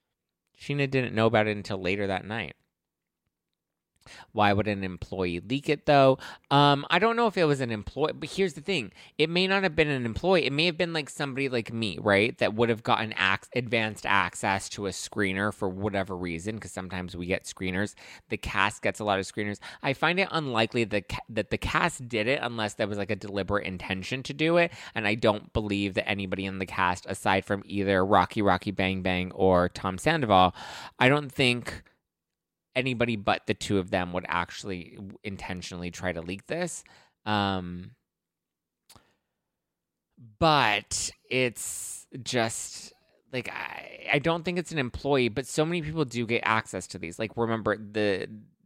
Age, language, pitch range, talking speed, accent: 20-39, English, 95-135 Hz, 185 wpm, American